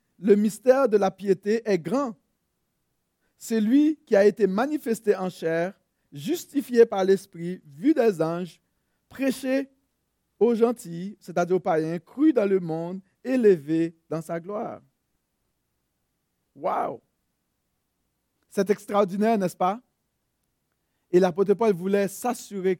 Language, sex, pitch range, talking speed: French, male, 170-225 Hz, 125 wpm